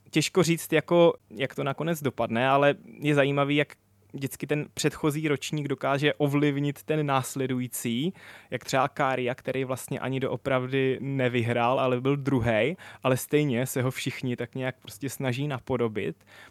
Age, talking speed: 20-39, 145 wpm